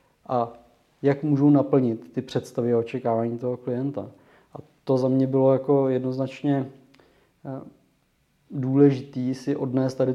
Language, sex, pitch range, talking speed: Czech, male, 125-140 Hz, 125 wpm